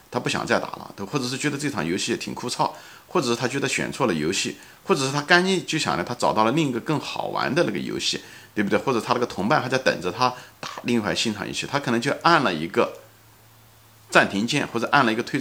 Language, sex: Chinese, male